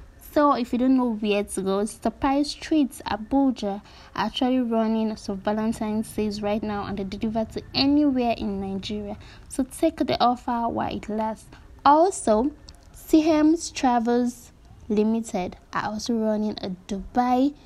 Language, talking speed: English, 145 wpm